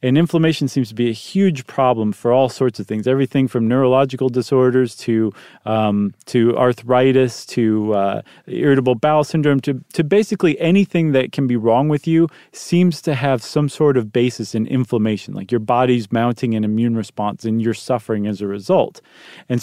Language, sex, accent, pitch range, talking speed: English, male, American, 120-150 Hz, 180 wpm